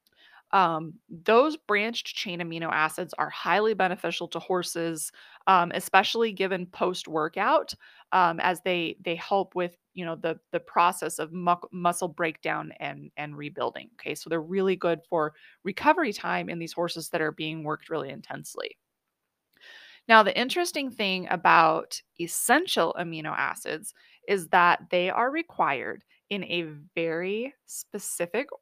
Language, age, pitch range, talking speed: English, 20-39, 170-205 Hz, 140 wpm